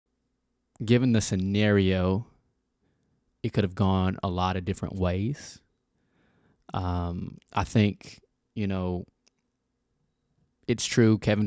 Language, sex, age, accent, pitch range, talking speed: English, male, 20-39, American, 95-120 Hz, 105 wpm